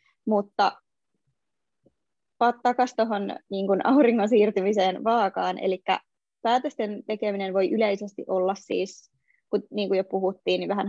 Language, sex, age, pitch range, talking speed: Finnish, female, 20-39, 195-230 Hz, 115 wpm